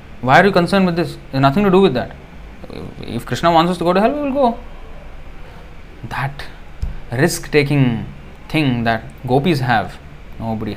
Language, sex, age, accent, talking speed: English, male, 30-49, Indian, 160 wpm